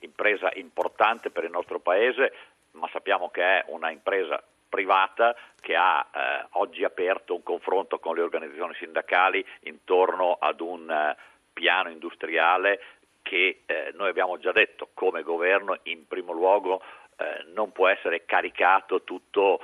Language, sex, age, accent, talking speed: Italian, male, 50-69, native, 145 wpm